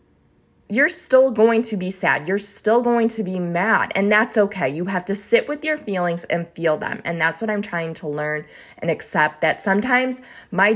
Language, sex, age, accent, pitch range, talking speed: English, female, 20-39, American, 165-225 Hz, 205 wpm